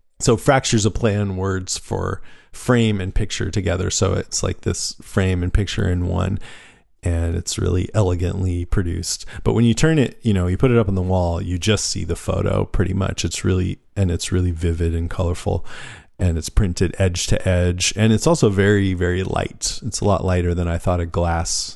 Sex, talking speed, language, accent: male, 205 wpm, English, American